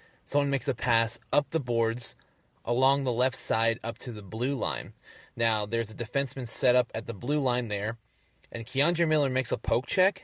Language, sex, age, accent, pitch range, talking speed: English, male, 20-39, American, 110-135 Hz, 200 wpm